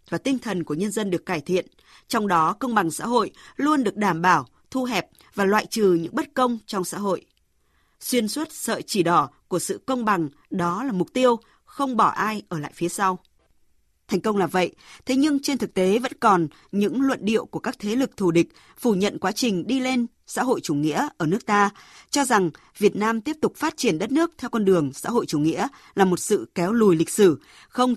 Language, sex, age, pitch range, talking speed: Vietnamese, female, 20-39, 175-235 Hz, 230 wpm